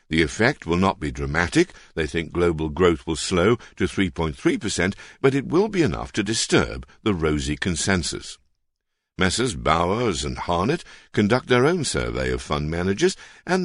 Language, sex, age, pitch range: Chinese, male, 60-79, 75-115 Hz